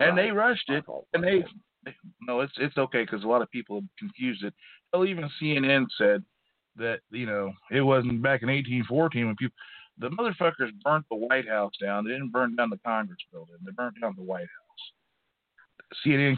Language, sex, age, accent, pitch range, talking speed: English, male, 50-69, American, 115-160 Hz, 190 wpm